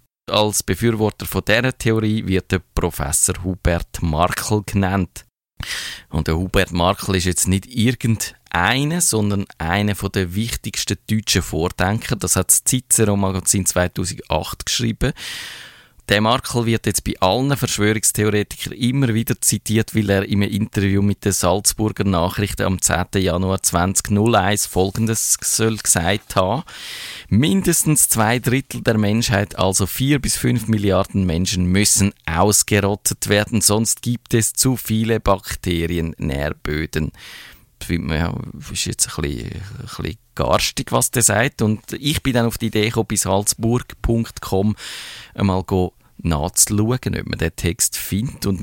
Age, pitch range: 20-39, 90-110 Hz